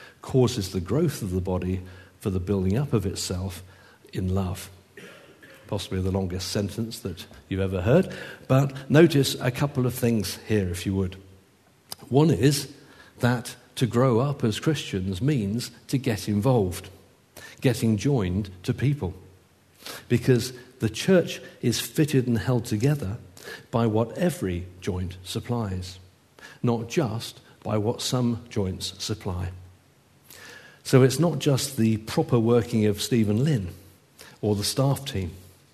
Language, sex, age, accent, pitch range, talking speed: English, male, 50-69, British, 95-130 Hz, 140 wpm